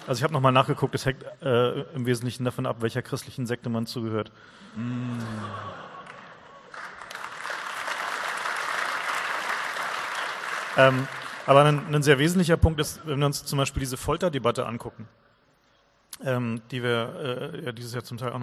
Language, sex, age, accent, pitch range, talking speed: English, male, 40-59, German, 125-150 Hz, 135 wpm